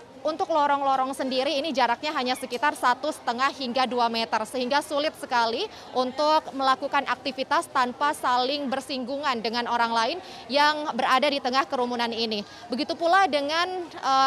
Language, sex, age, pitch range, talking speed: Indonesian, female, 20-39, 250-295 Hz, 140 wpm